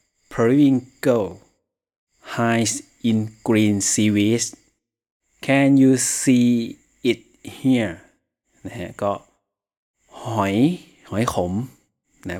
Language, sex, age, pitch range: Thai, male, 30-49, 95-120 Hz